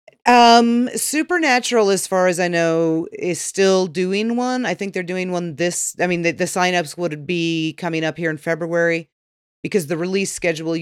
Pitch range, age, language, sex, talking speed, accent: 145-175 Hz, 30-49, English, female, 185 wpm, American